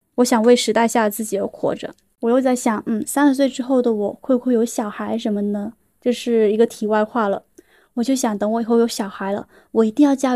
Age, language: 20-39, Chinese